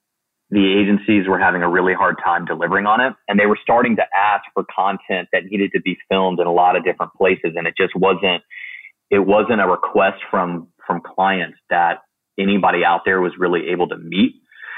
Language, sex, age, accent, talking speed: English, male, 30-49, American, 205 wpm